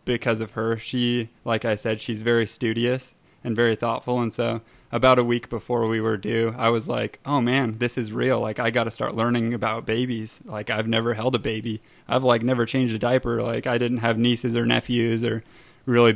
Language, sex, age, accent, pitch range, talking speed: English, male, 20-39, American, 110-120 Hz, 220 wpm